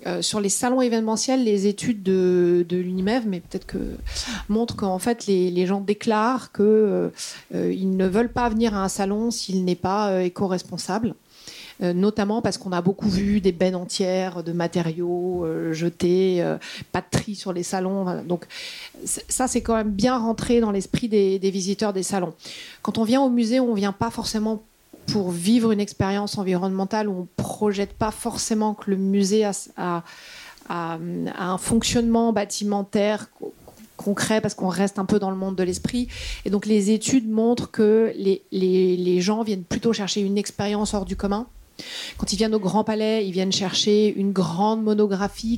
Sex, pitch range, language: female, 185-220 Hz, French